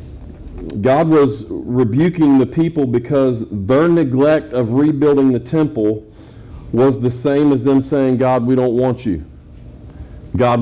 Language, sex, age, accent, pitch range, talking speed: English, male, 40-59, American, 120-145 Hz, 135 wpm